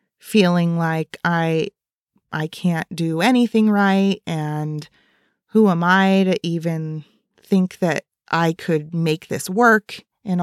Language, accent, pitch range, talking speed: English, American, 170-210 Hz, 125 wpm